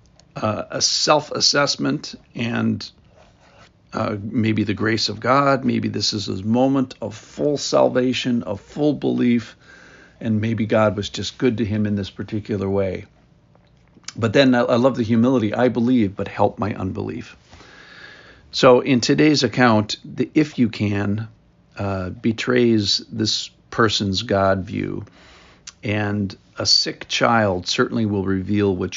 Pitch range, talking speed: 100-120 Hz, 140 wpm